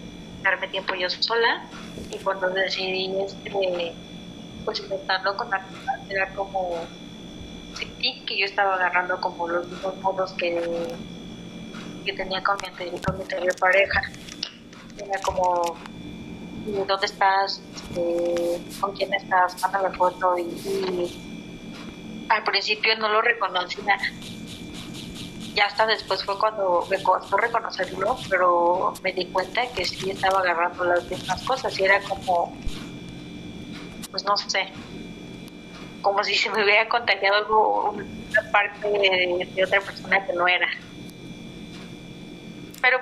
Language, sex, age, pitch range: Spanish, female, 20-39, 180-200 Hz